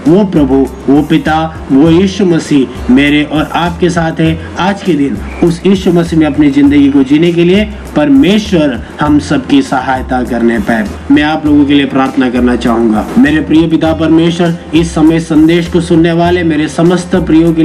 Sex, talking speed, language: male, 180 wpm, Hindi